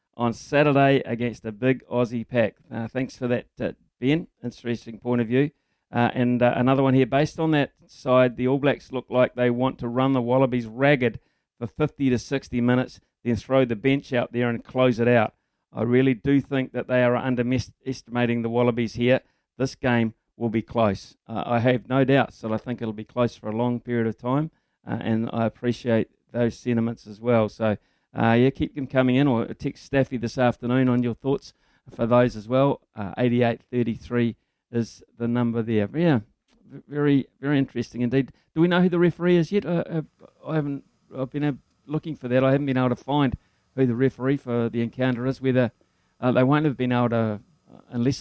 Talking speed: 205 wpm